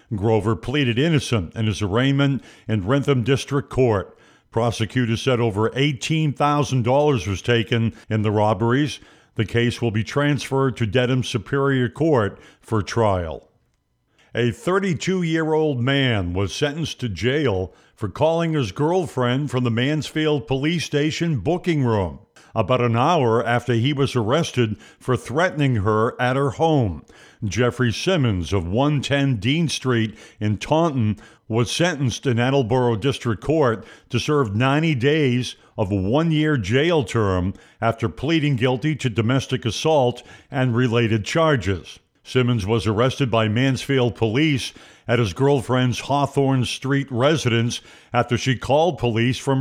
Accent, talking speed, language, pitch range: American, 135 wpm, English, 115-145 Hz